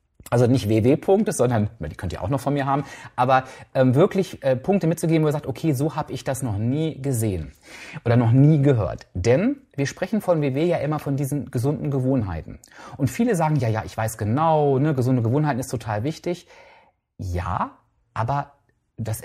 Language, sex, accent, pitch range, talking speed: German, male, German, 115-155 Hz, 185 wpm